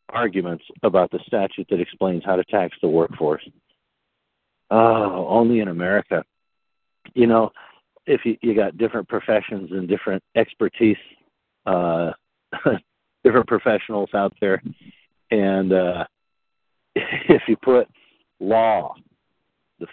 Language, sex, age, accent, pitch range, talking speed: English, male, 50-69, American, 95-115 Hz, 110 wpm